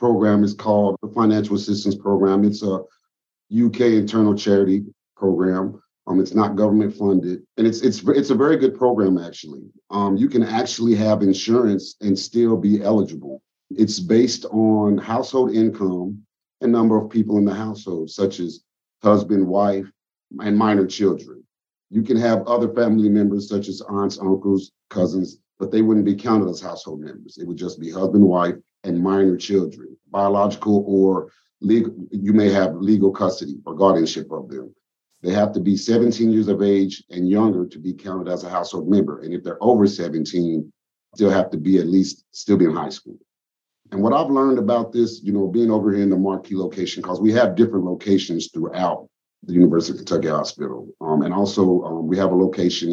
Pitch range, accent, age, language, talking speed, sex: 95-110 Hz, American, 40-59, English, 185 wpm, male